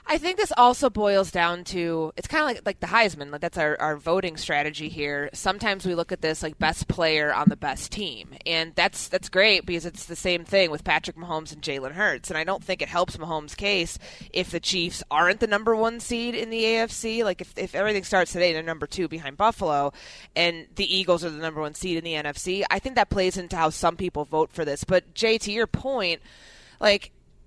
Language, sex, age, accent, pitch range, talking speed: English, female, 20-39, American, 160-205 Hz, 235 wpm